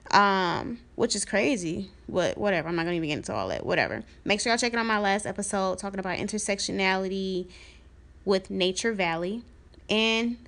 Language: English